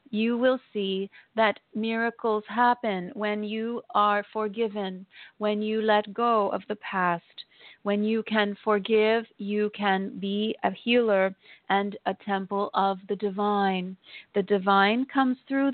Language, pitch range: English, 200-230 Hz